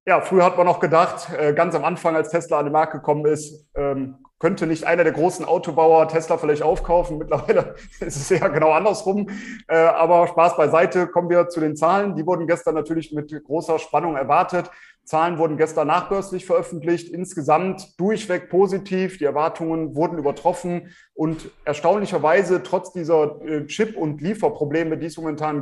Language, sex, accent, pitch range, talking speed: German, male, German, 155-175 Hz, 160 wpm